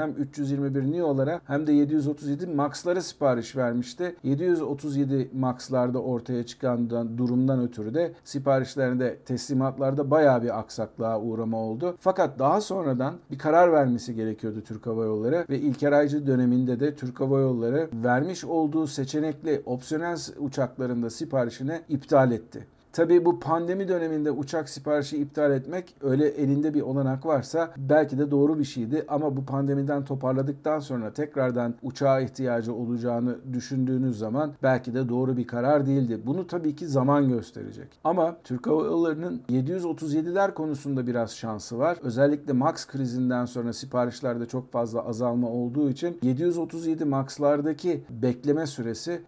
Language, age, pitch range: Turkish, 50-69, 125-150 Hz